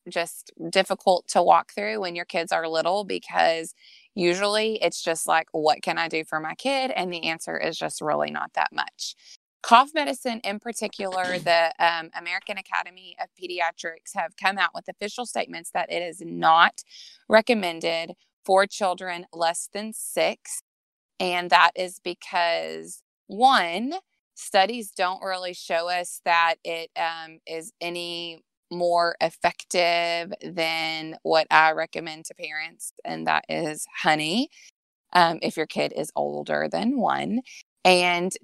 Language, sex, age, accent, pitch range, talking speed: English, female, 20-39, American, 165-195 Hz, 145 wpm